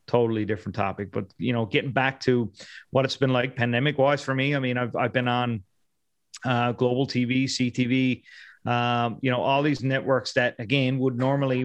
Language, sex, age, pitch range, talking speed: English, male, 30-49, 115-130 Hz, 190 wpm